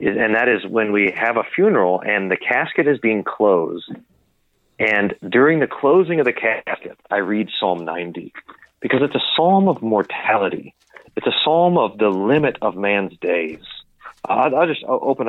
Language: English